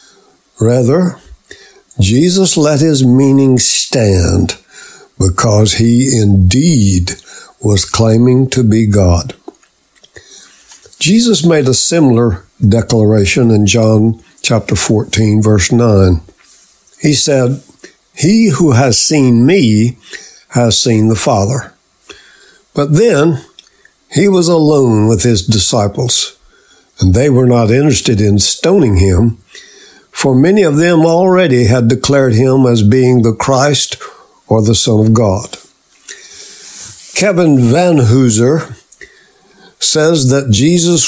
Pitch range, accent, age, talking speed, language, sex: 110-150 Hz, American, 60-79, 110 wpm, English, male